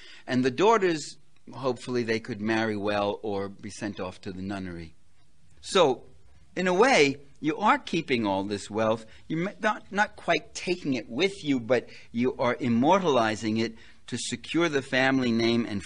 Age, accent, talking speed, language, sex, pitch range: 60-79, American, 165 wpm, English, male, 105-135 Hz